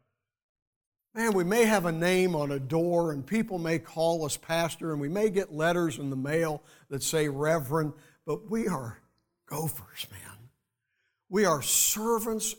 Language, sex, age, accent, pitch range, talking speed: English, male, 60-79, American, 150-195 Hz, 160 wpm